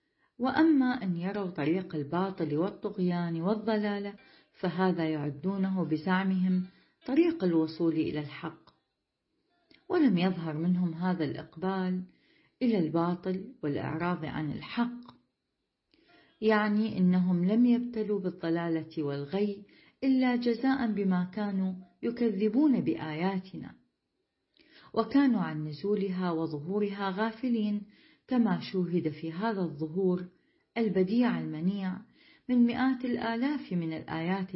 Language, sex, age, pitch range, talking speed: Arabic, female, 40-59, 175-240 Hz, 90 wpm